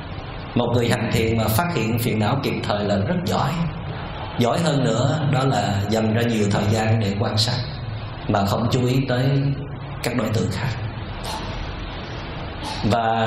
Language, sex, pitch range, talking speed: Vietnamese, male, 110-140 Hz, 165 wpm